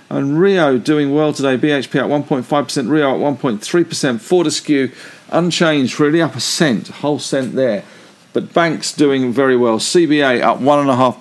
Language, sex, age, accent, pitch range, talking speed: English, male, 50-69, British, 125-155 Hz, 145 wpm